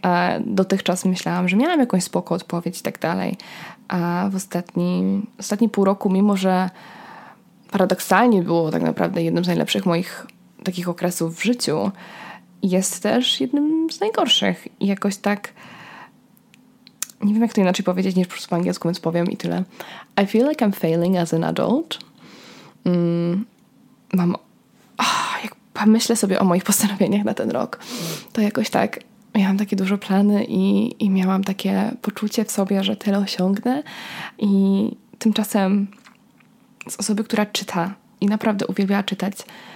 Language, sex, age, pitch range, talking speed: Polish, female, 20-39, 185-225 Hz, 150 wpm